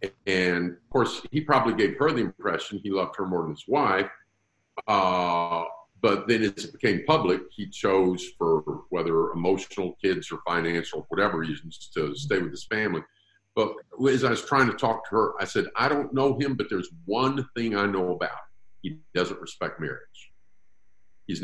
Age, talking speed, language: 50-69, 180 wpm, English